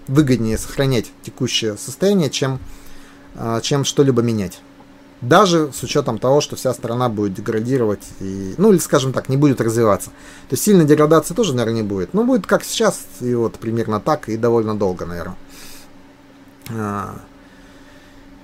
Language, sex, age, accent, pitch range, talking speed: Russian, male, 30-49, native, 115-160 Hz, 145 wpm